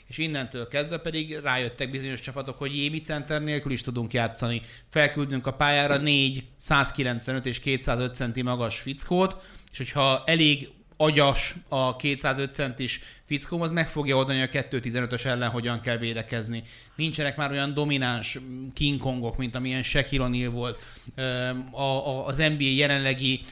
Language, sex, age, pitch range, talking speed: Hungarian, male, 30-49, 125-145 Hz, 145 wpm